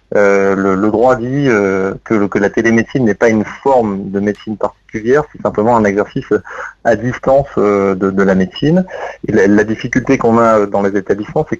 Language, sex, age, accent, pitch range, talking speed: French, male, 30-49, French, 100-115 Hz, 200 wpm